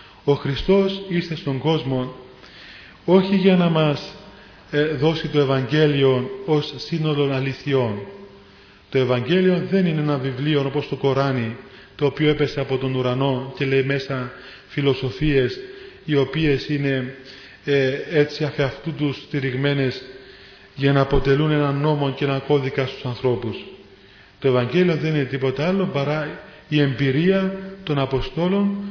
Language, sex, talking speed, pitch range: Greek, male, 130 wpm, 135-170 Hz